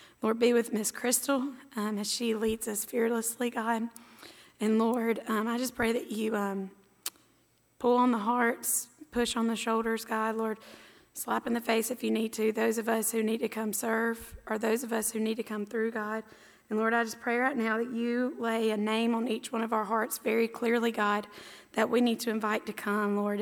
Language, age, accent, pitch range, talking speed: English, 20-39, American, 210-230 Hz, 220 wpm